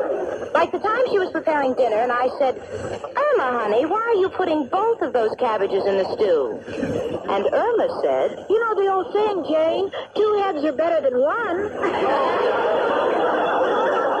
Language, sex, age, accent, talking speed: English, female, 50-69, American, 160 wpm